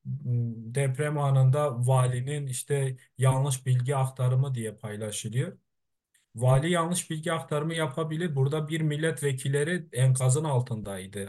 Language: Turkish